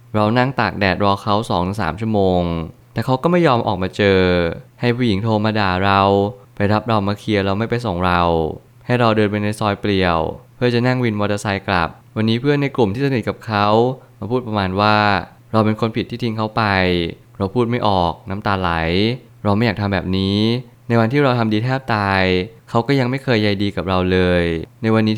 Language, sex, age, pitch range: Thai, male, 20-39, 95-115 Hz